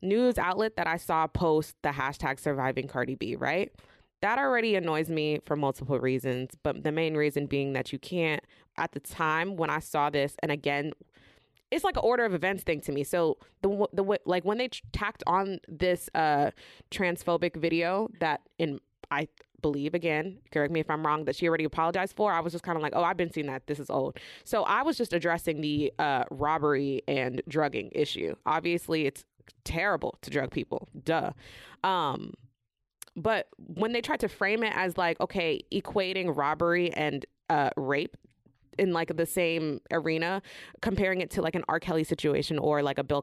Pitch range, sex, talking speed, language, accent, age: 145-175 Hz, female, 190 wpm, English, American, 20-39